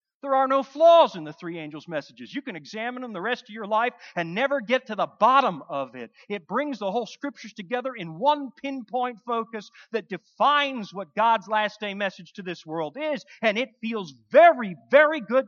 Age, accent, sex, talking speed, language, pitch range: 40-59, American, male, 205 wpm, English, 195-285 Hz